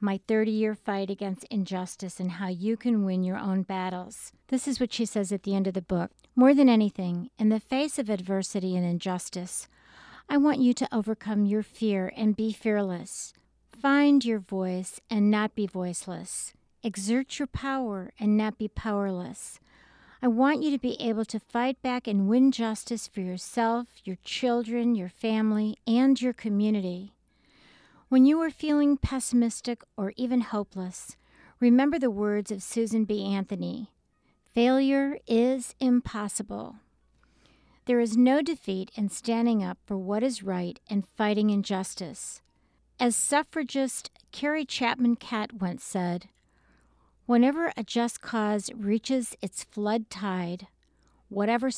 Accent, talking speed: American, 145 wpm